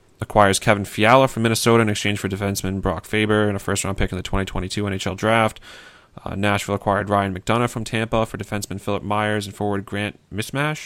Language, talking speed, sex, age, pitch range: English, 195 wpm, male, 30-49, 95-110 Hz